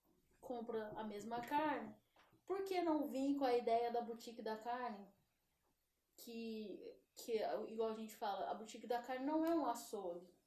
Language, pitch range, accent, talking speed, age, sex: Portuguese, 230-295 Hz, Brazilian, 165 wpm, 10-29, female